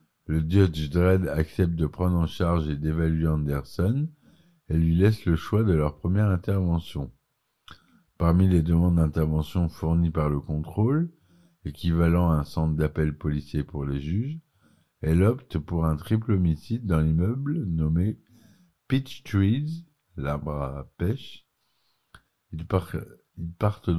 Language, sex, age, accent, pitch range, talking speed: French, male, 50-69, French, 80-105 Hz, 135 wpm